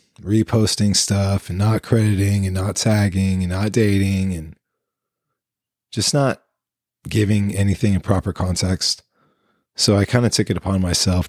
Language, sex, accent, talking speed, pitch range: English, male, American, 145 wpm, 90-105 Hz